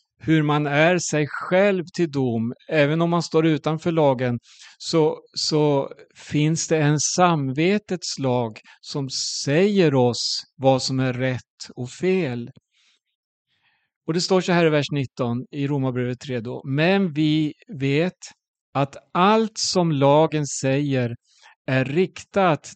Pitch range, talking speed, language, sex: 130-170 Hz, 135 wpm, Swedish, male